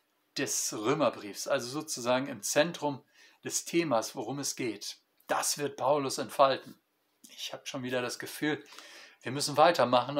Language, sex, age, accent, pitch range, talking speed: German, male, 50-69, German, 130-165 Hz, 140 wpm